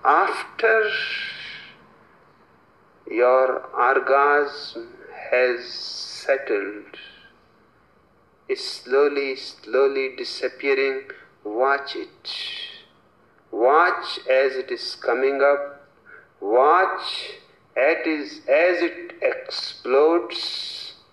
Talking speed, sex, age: 60 wpm, male, 50-69